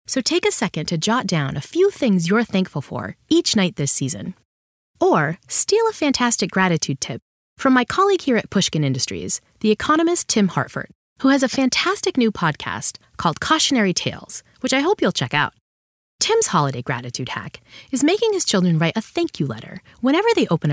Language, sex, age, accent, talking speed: English, female, 30-49, American, 190 wpm